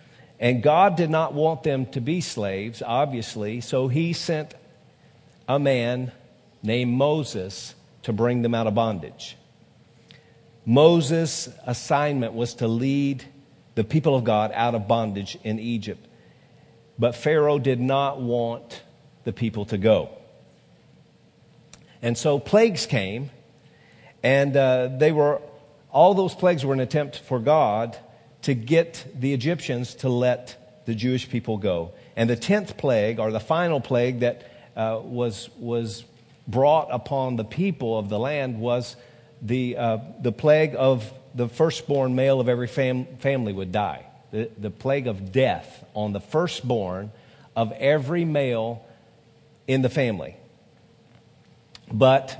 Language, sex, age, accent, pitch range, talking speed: English, male, 50-69, American, 115-145 Hz, 140 wpm